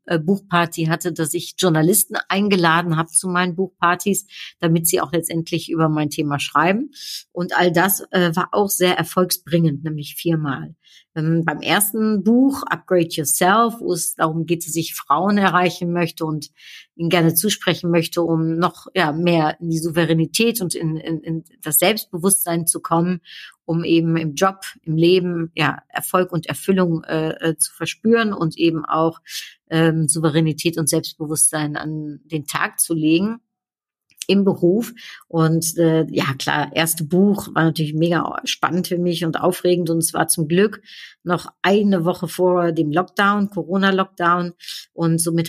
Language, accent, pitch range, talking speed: German, German, 160-185 Hz, 155 wpm